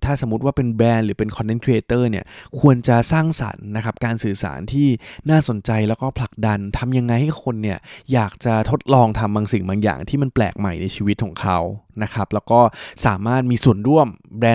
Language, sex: Thai, male